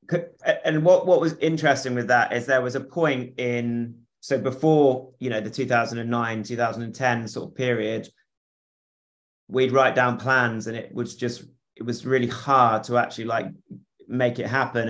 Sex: male